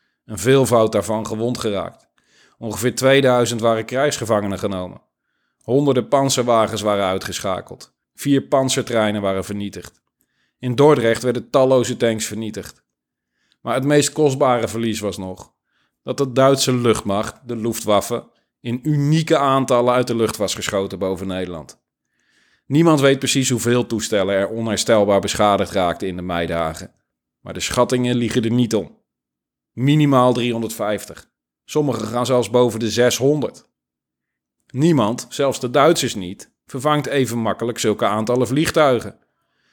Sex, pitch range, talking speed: male, 105-130 Hz, 130 wpm